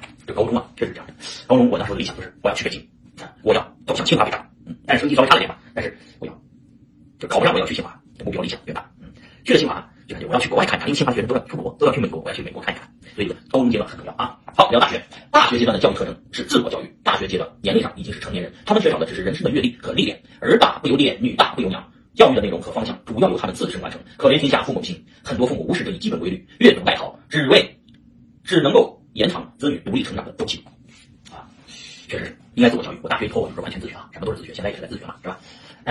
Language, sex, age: Chinese, male, 40-59